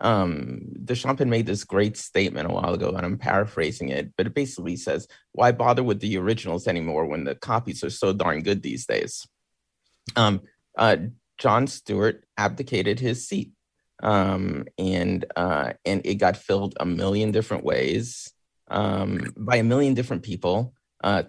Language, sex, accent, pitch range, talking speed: English, male, American, 90-115 Hz, 160 wpm